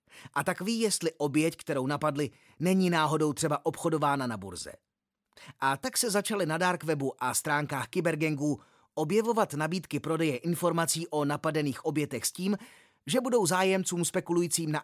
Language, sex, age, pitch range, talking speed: Czech, male, 30-49, 145-185 Hz, 145 wpm